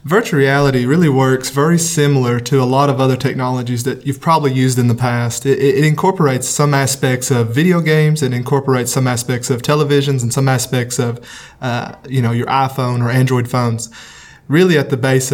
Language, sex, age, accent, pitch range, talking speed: English, male, 20-39, American, 125-140 Hz, 195 wpm